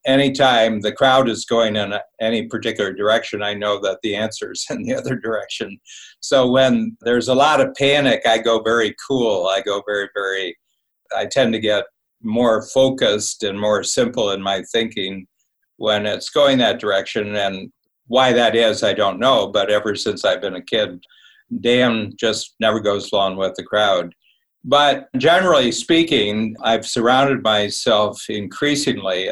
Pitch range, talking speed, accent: 105-130 Hz, 165 wpm, American